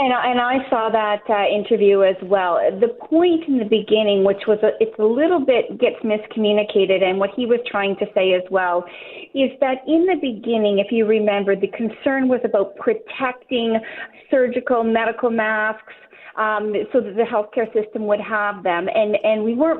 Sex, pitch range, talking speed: female, 210-260 Hz, 180 wpm